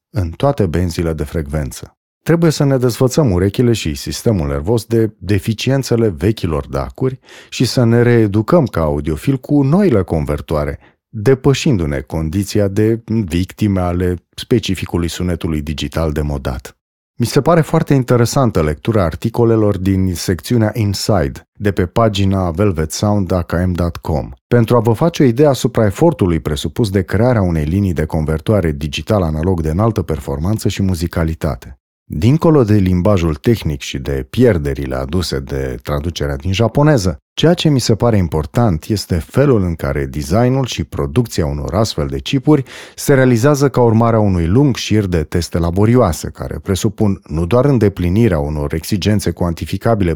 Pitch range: 80-120 Hz